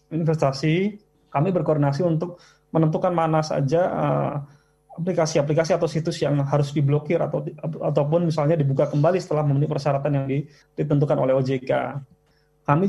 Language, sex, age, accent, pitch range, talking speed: Indonesian, male, 20-39, native, 140-165 Hz, 125 wpm